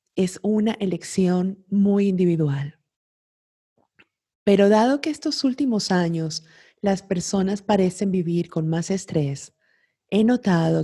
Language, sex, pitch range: Spanish, female, 160-195 Hz